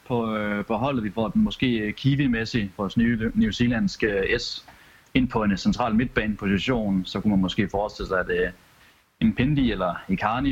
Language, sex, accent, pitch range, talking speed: Danish, male, native, 95-120 Hz, 170 wpm